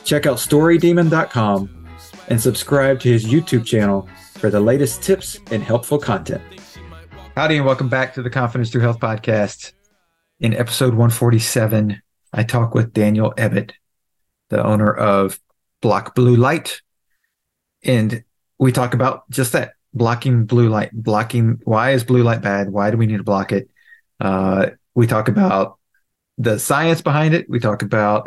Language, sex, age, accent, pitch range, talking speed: English, male, 40-59, American, 105-130 Hz, 155 wpm